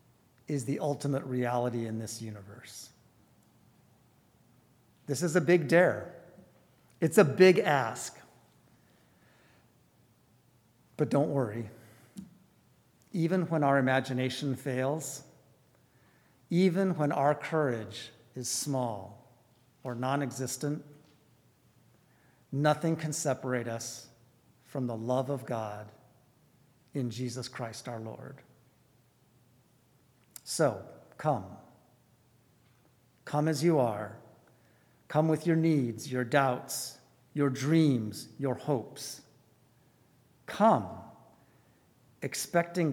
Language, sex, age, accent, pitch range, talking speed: English, male, 50-69, American, 120-145 Hz, 90 wpm